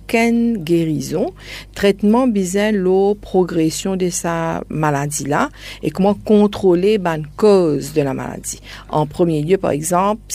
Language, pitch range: French, 150-185 Hz